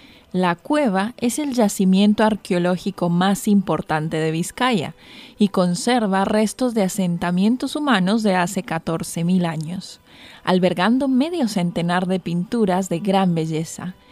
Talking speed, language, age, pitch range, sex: 120 wpm, Spanish, 20-39, 175-215 Hz, female